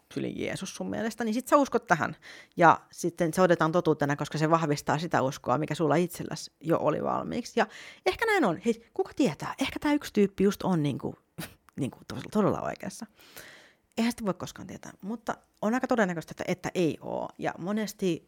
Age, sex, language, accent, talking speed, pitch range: 30-49, female, Finnish, native, 185 wpm, 150-215 Hz